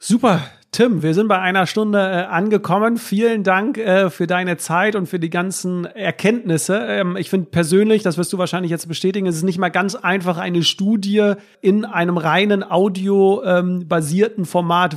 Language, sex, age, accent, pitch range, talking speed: German, male, 40-59, German, 175-210 Hz, 175 wpm